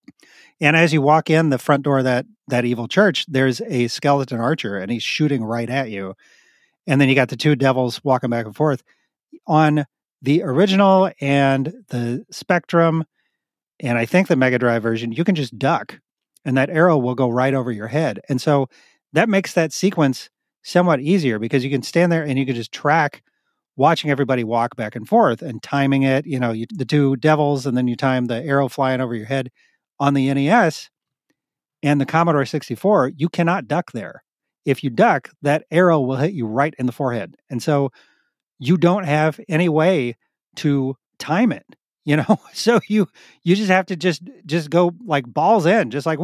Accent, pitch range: American, 130-170 Hz